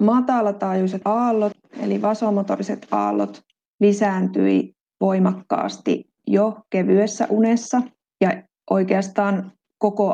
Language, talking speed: Finnish, 75 wpm